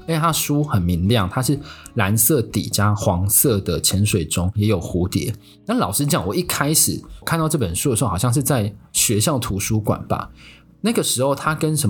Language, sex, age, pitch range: Chinese, male, 20-39, 100-150 Hz